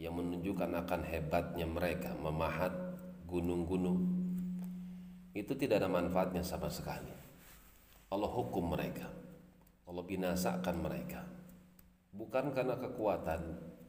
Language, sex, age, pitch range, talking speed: Indonesian, male, 40-59, 80-125 Hz, 90 wpm